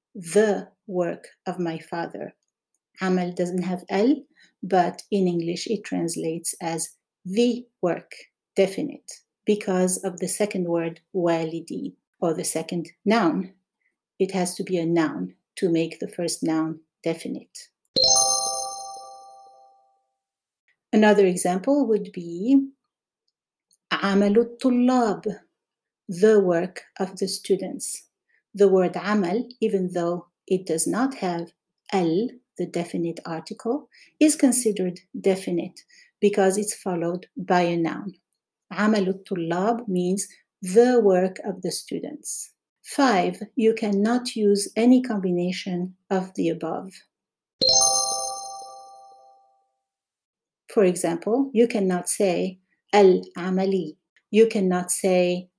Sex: female